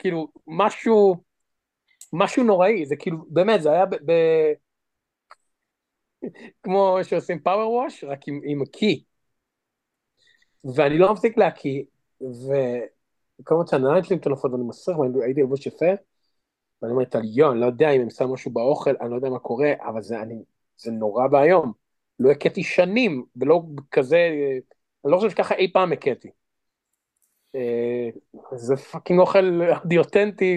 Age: 30-49